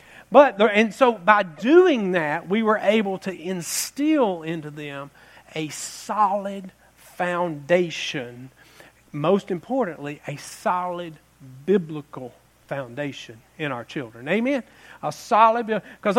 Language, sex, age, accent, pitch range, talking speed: English, male, 40-59, American, 150-205 Hz, 105 wpm